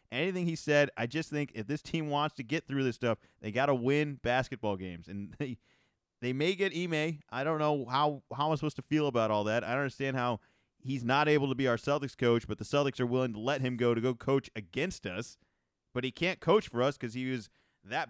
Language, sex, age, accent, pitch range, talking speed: English, male, 30-49, American, 125-165 Hz, 250 wpm